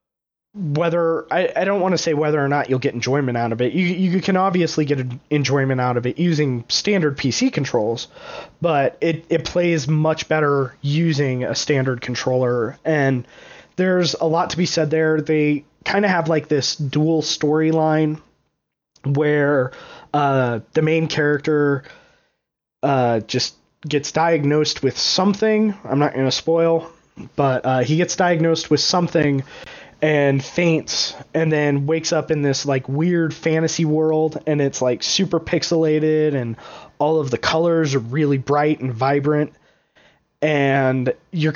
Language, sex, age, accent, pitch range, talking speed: English, male, 20-39, American, 140-165 Hz, 155 wpm